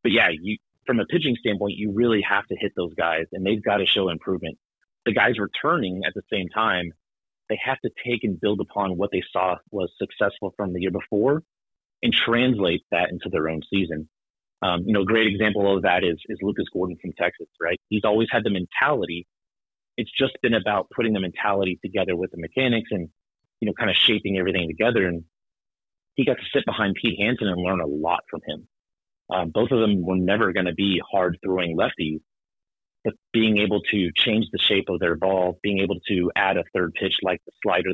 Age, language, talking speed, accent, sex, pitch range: 30-49, English, 210 wpm, American, male, 90-105 Hz